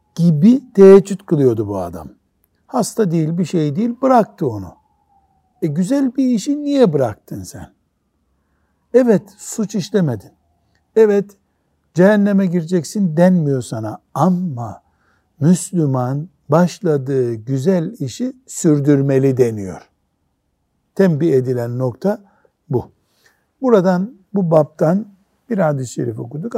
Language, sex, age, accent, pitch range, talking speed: Turkish, male, 60-79, native, 120-195 Hz, 100 wpm